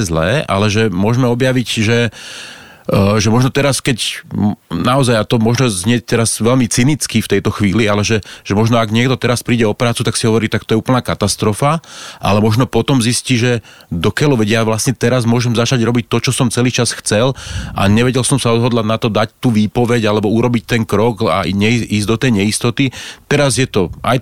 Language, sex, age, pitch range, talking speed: Slovak, male, 30-49, 105-125 Hz, 200 wpm